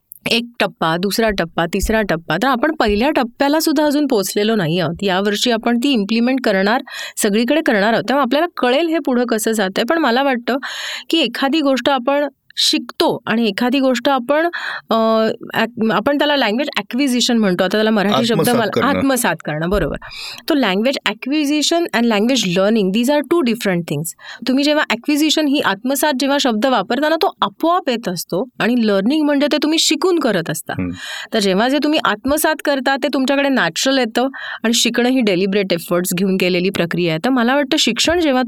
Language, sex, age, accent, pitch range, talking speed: Marathi, female, 30-49, native, 205-280 Hz, 140 wpm